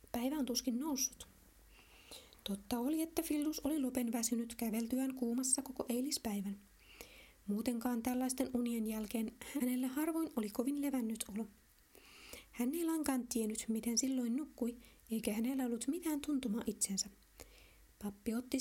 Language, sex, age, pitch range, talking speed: Finnish, female, 20-39, 230-270 Hz, 130 wpm